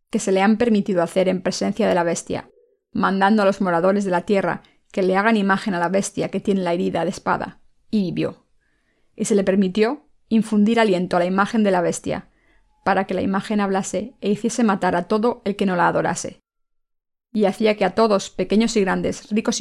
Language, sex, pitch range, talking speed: Spanish, female, 190-225 Hz, 210 wpm